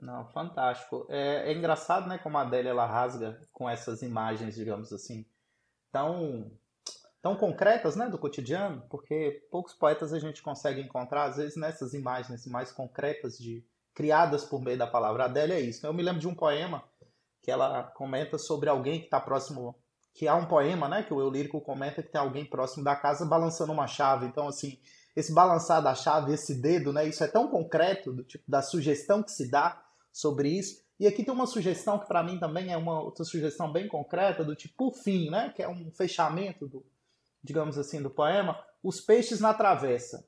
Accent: Brazilian